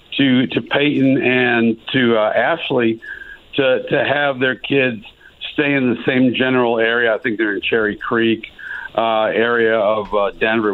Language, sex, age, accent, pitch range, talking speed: English, male, 60-79, American, 120-150 Hz, 160 wpm